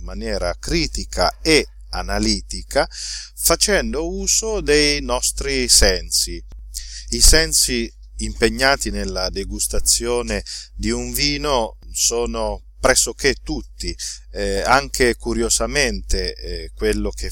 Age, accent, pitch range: 40-59, native, 100-145 Hz